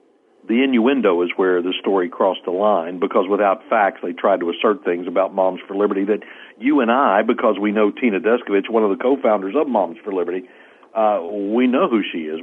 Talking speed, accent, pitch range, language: 210 wpm, American, 95-135 Hz, English